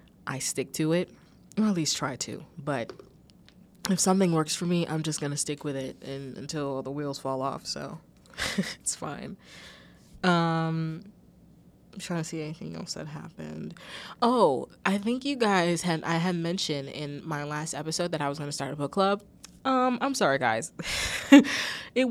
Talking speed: 180 wpm